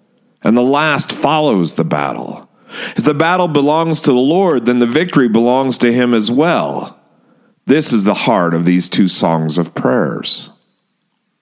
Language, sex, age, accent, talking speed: English, male, 40-59, American, 165 wpm